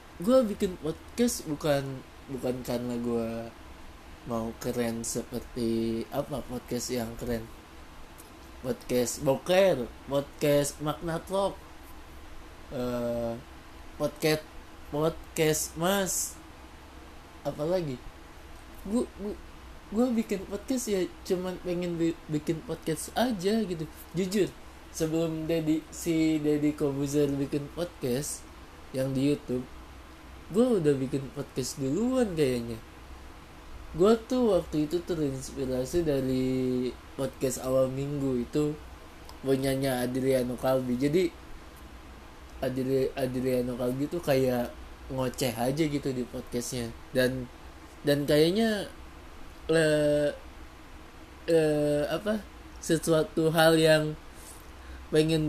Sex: male